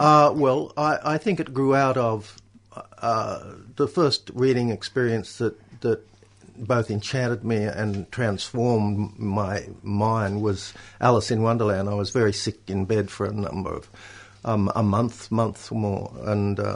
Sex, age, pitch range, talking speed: male, 60-79, 105-125 Hz, 160 wpm